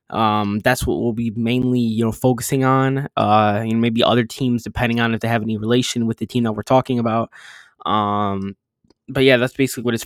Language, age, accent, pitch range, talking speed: English, 10-29, American, 105-125 Hz, 215 wpm